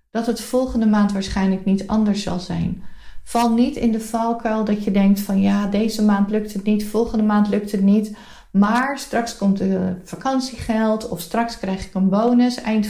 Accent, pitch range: Dutch, 195-235 Hz